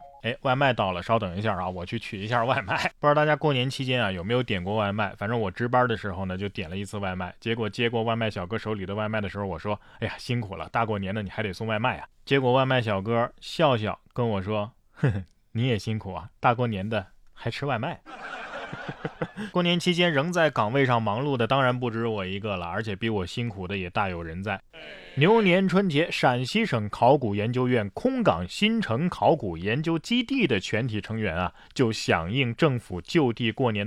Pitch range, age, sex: 105-150 Hz, 20-39, male